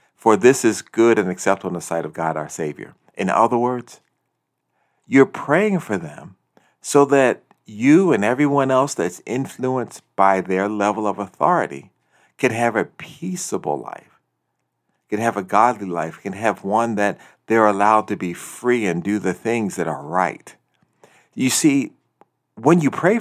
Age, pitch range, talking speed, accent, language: 50-69, 95-135 Hz, 165 wpm, American, English